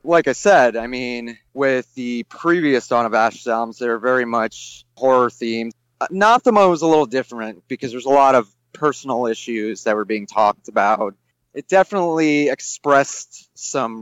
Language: English